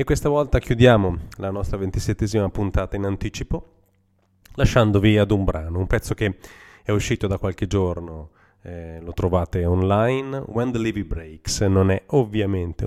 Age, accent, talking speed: 30-49, native, 155 wpm